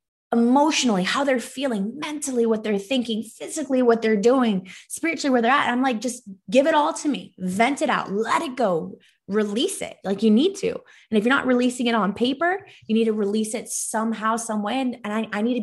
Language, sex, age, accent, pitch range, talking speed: English, female, 20-39, American, 195-245 Hz, 220 wpm